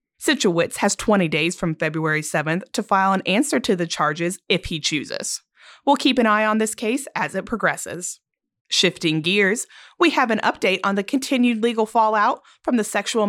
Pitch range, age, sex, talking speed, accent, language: 170-235 Hz, 30-49, female, 185 wpm, American, English